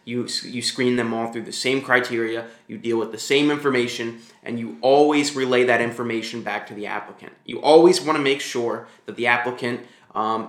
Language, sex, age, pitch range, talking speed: English, male, 20-39, 115-135 Hz, 200 wpm